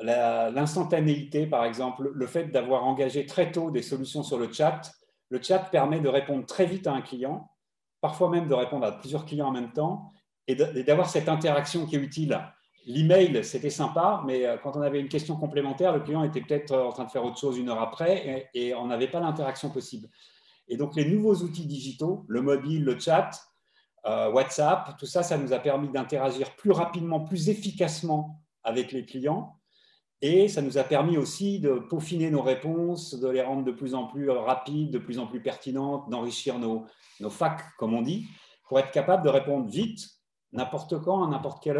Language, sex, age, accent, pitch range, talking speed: French, male, 40-59, French, 130-165 Hz, 200 wpm